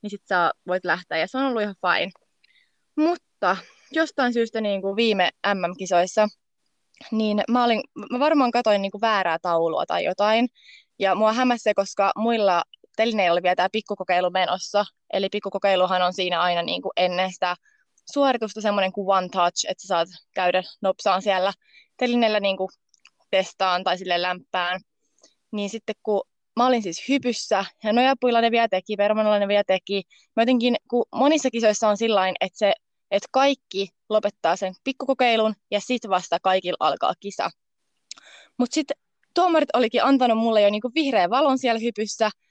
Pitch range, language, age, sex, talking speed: 185-240 Hz, Finnish, 20-39, female, 160 wpm